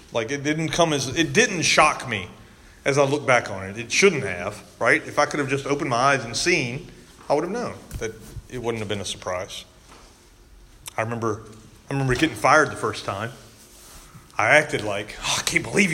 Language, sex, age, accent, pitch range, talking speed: English, male, 30-49, American, 115-160 Hz, 210 wpm